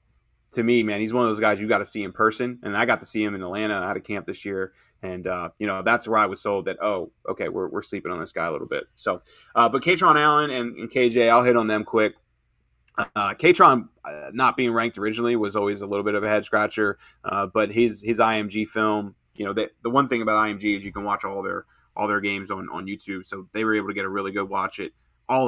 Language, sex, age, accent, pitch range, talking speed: English, male, 20-39, American, 100-120 Hz, 275 wpm